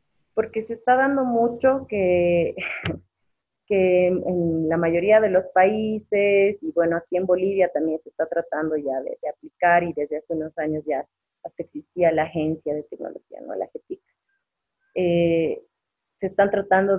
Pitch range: 160-205 Hz